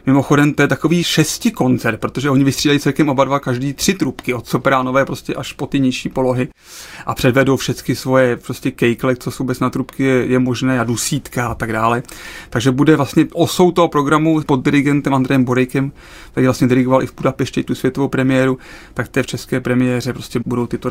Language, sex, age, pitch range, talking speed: Czech, male, 30-49, 130-155 Hz, 200 wpm